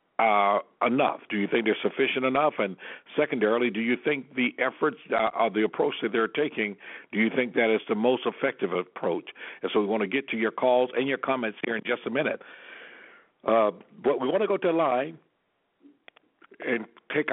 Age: 60-79